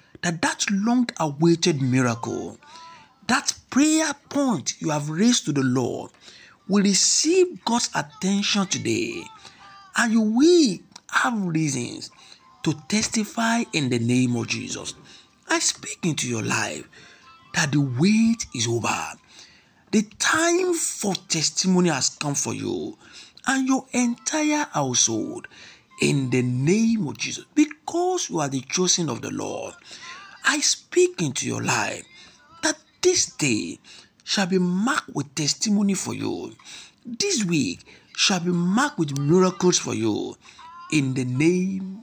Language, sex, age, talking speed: English, male, 60-79, 130 wpm